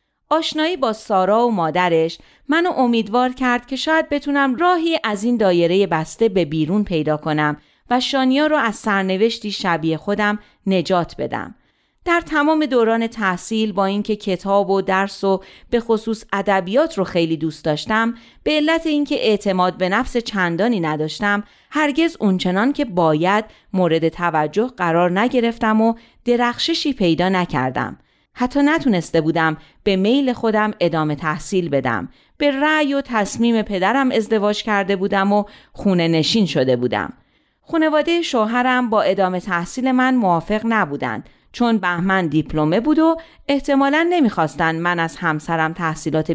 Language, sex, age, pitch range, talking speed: Persian, female, 40-59, 170-255 Hz, 140 wpm